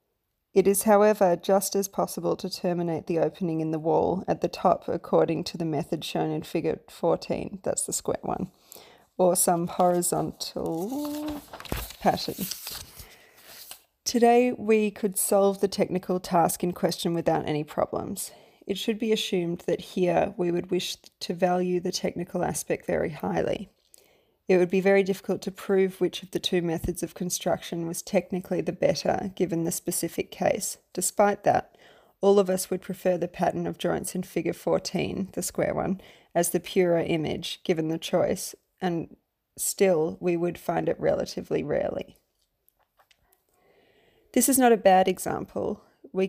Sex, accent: female, Australian